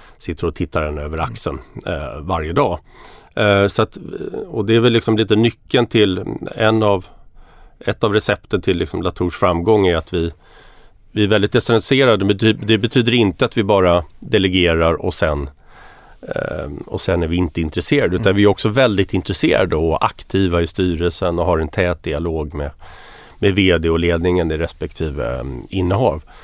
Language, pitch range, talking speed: Swedish, 85-110 Hz, 175 wpm